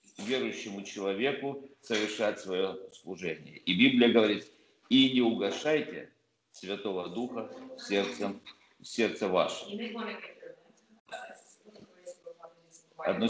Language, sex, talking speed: Russian, male, 85 wpm